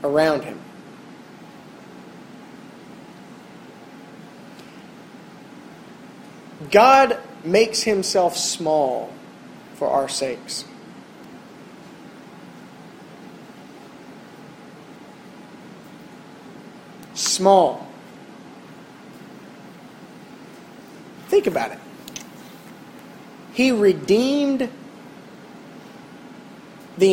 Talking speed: 35 wpm